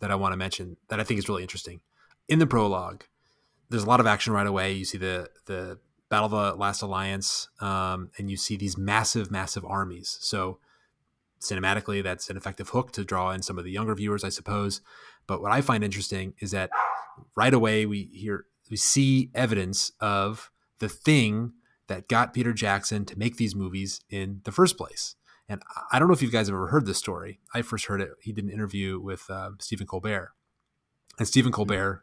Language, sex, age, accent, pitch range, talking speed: English, male, 30-49, American, 95-115 Hz, 205 wpm